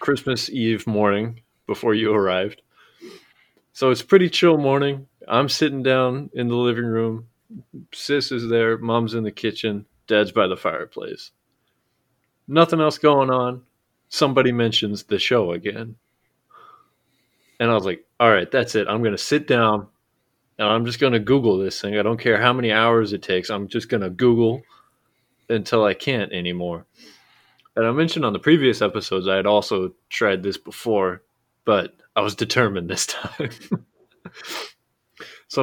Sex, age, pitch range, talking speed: male, 30-49, 105-135 Hz, 155 wpm